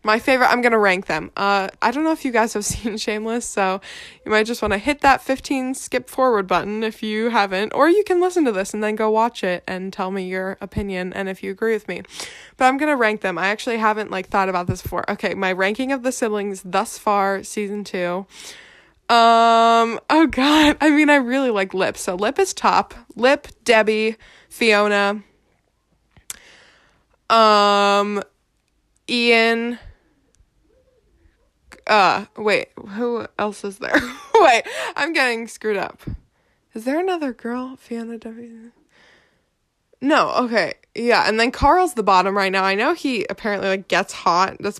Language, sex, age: English, female, 20-39